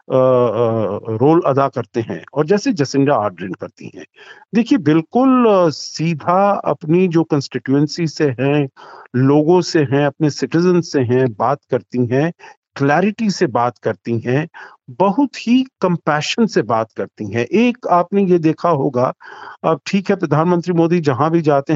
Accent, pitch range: native, 130-180 Hz